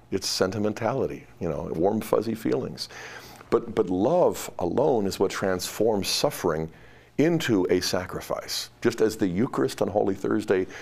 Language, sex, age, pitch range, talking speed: English, male, 50-69, 95-110 Hz, 140 wpm